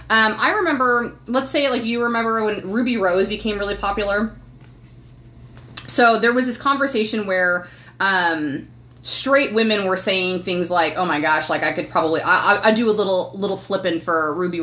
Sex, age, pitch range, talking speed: female, 30-49, 175-230 Hz, 175 wpm